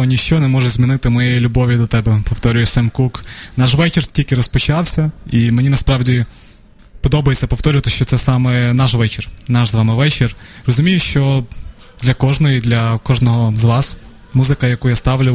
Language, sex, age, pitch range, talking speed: Ukrainian, male, 20-39, 115-130 Hz, 160 wpm